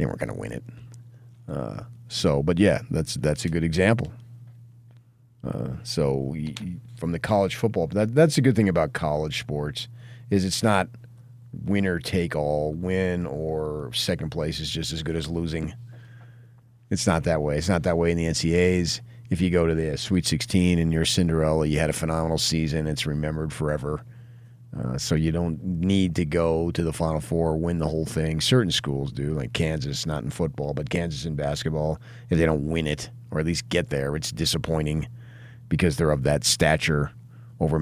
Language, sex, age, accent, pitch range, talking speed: English, male, 40-59, American, 75-120 Hz, 185 wpm